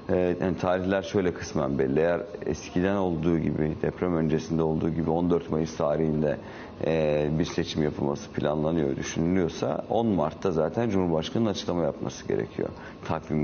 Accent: native